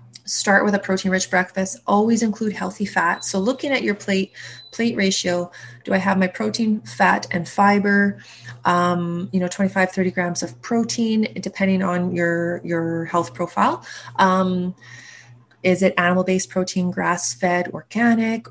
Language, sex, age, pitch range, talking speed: English, female, 20-39, 175-200 Hz, 150 wpm